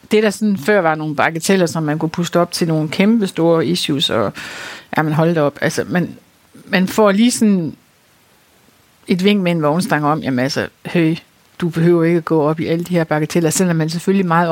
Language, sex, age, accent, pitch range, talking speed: Danish, female, 60-79, native, 160-200 Hz, 215 wpm